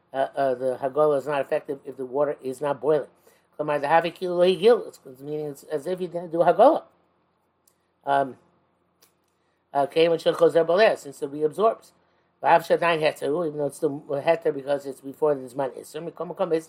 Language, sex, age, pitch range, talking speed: English, male, 60-79, 145-170 Hz, 150 wpm